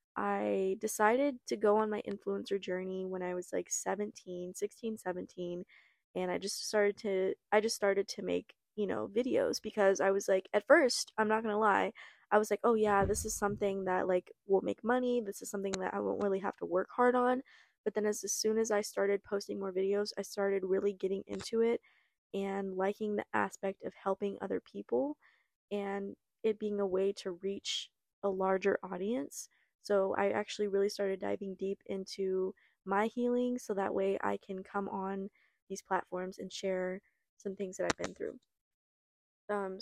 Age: 20-39